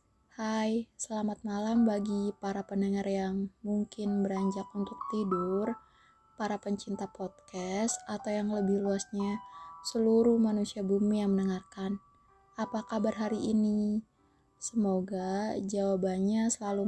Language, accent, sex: Indonesian, native, female